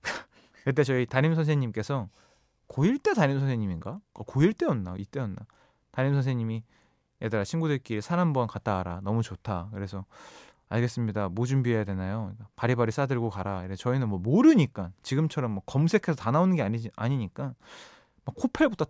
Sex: male